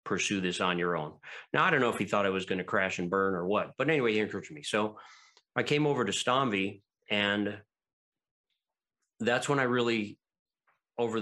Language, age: English, 40-59